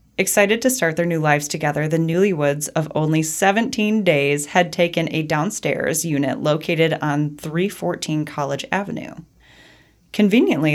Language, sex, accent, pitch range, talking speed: English, female, American, 145-180 Hz, 135 wpm